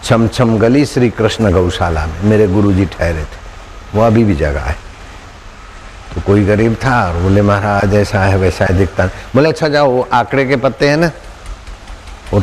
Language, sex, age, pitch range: Hindi, male, 60-79, 95-125 Hz